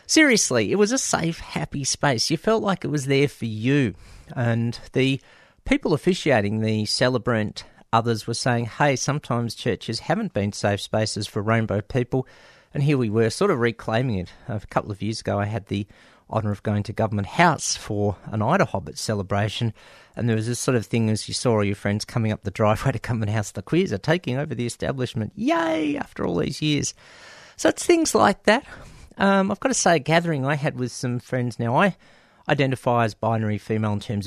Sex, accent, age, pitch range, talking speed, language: male, Australian, 40-59, 105-145 Hz, 205 wpm, English